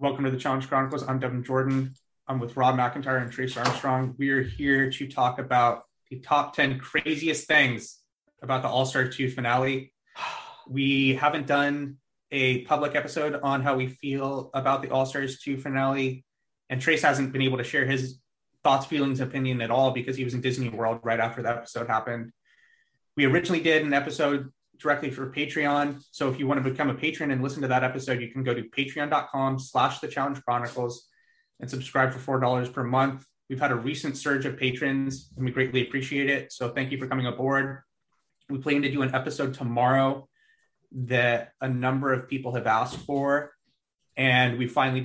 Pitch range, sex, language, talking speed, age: 125-140 Hz, male, English, 190 wpm, 30-49